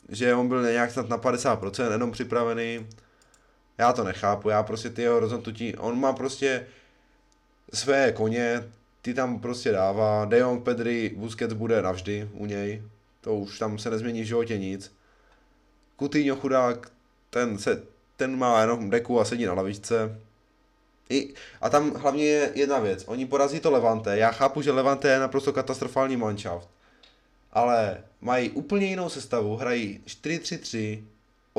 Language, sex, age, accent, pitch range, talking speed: Czech, male, 20-39, native, 110-135 Hz, 150 wpm